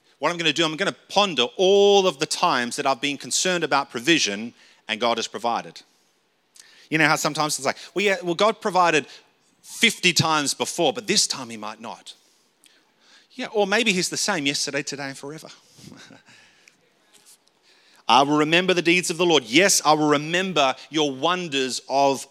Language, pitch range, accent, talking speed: English, 130-165 Hz, Australian, 180 wpm